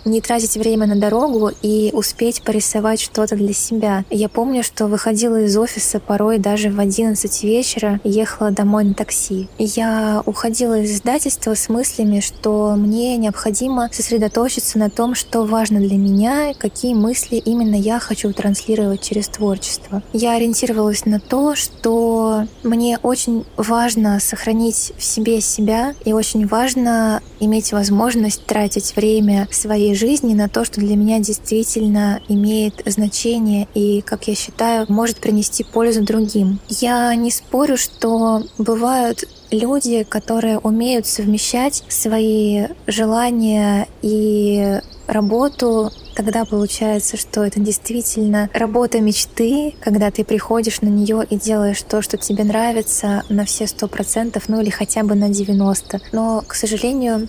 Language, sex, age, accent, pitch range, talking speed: Russian, female, 20-39, native, 210-230 Hz, 135 wpm